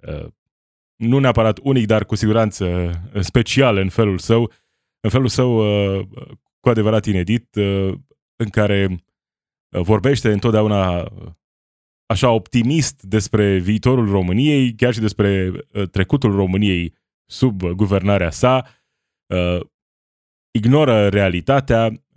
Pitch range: 95-120 Hz